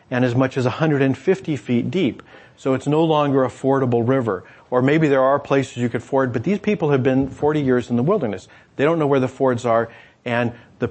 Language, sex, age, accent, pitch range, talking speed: English, male, 40-59, American, 115-140 Hz, 225 wpm